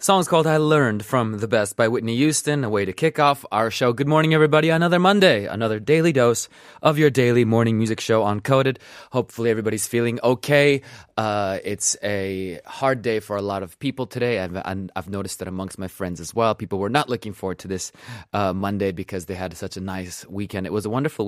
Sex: male